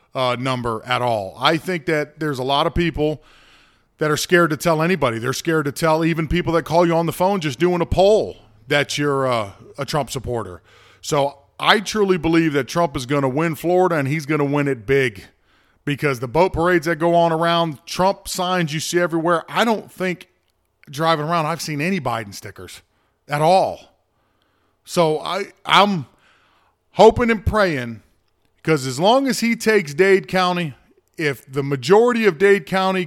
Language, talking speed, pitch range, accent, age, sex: English, 185 wpm, 135-175 Hz, American, 40-59, male